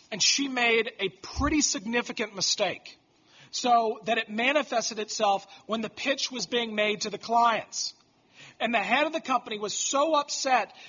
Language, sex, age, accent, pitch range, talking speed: English, male, 40-59, American, 220-295 Hz, 165 wpm